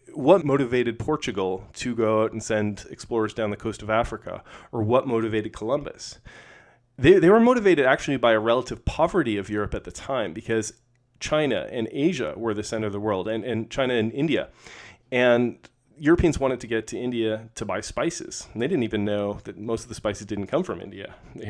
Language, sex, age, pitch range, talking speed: English, male, 30-49, 110-130 Hz, 200 wpm